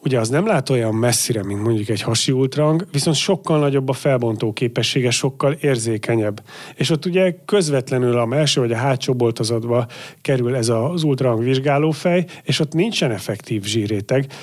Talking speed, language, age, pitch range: 160 wpm, Hungarian, 30-49, 115-135 Hz